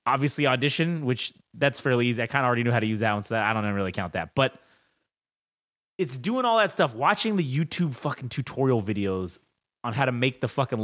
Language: English